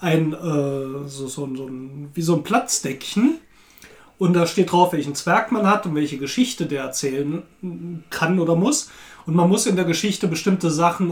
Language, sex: German, male